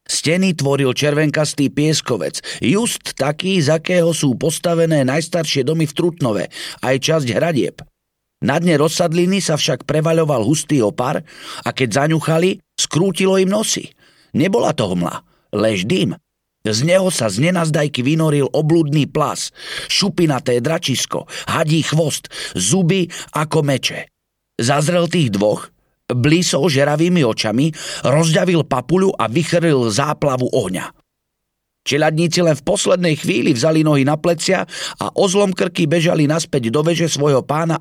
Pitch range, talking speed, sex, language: 130-165 Hz, 125 wpm, male, Slovak